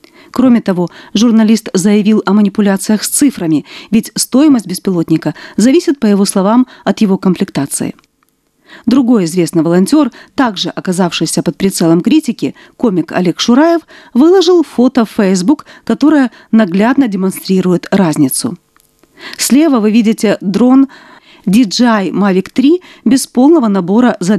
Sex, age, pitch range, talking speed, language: female, 40-59, 190-260 Hz, 120 wpm, Russian